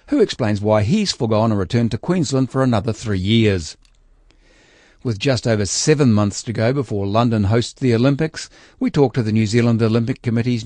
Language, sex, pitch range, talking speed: English, male, 105-130 Hz, 185 wpm